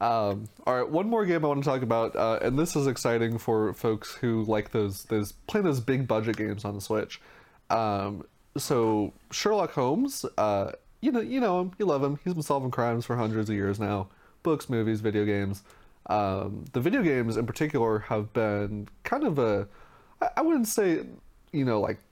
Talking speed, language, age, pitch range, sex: 200 wpm, English, 20-39, 105-125 Hz, male